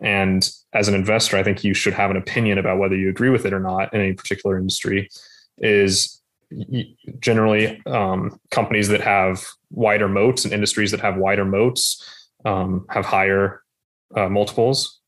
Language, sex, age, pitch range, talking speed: English, male, 20-39, 95-105 Hz, 165 wpm